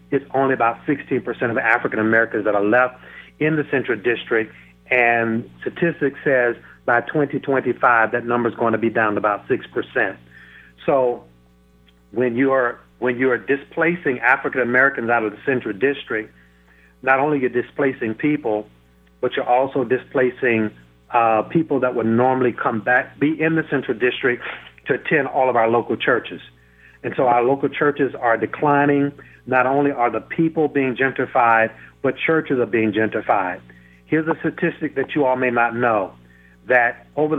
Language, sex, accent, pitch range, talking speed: English, male, American, 110-140 Hz, 165 wpm